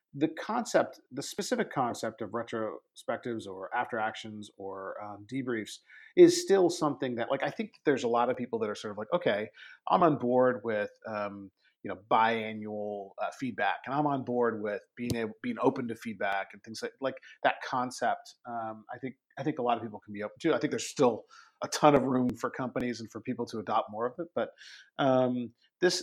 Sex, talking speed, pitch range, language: male, 210 wpm, 110-145 Hz, English